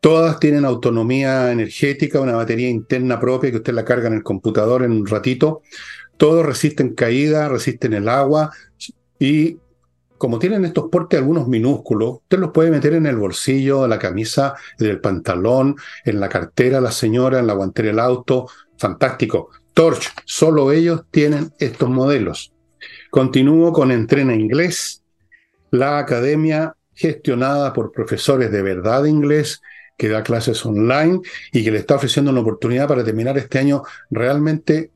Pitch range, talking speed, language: 115-150 Hz, 155 wpm, Spanish